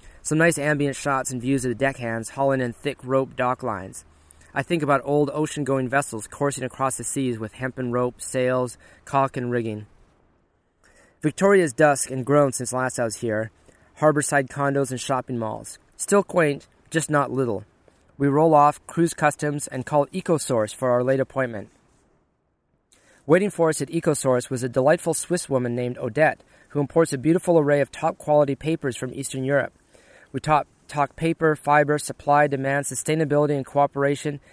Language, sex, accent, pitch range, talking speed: English, male, American, 125-155 Hz, 170 wpm